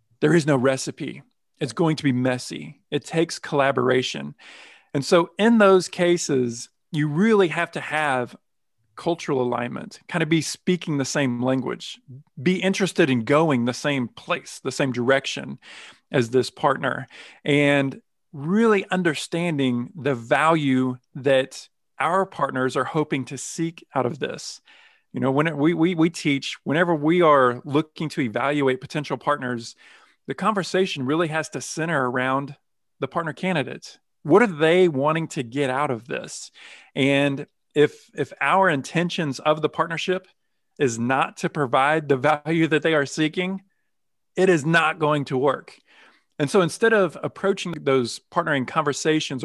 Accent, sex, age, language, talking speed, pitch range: American, male, 40-59, English, 150 wpm, 135-165 Hz